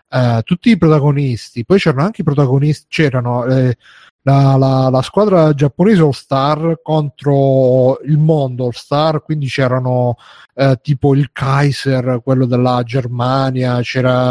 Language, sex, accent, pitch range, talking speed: Italian, male, native, 125-150 Hz, 135 wpm